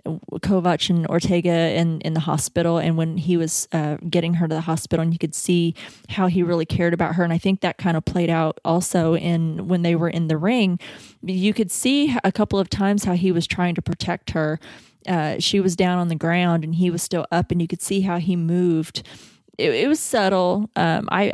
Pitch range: 165-185 Hz